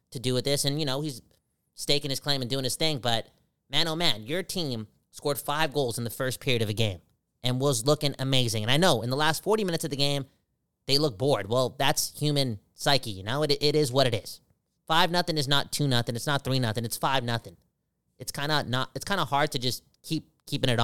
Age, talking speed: 20-39, 245 wpm